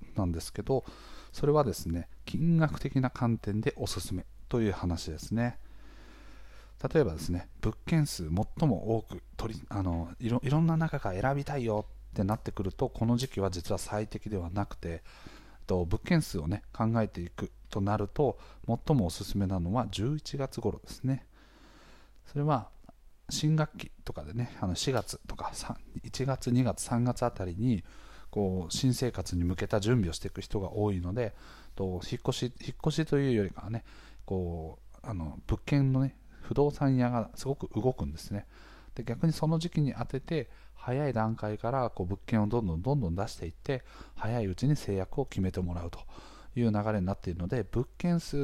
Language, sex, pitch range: Japanese, male, 95-130 Hz